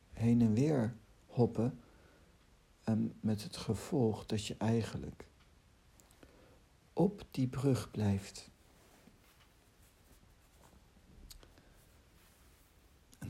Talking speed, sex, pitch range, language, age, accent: 70 wpm, male, 90-115 Hz, Dutch, 60-79, Dutch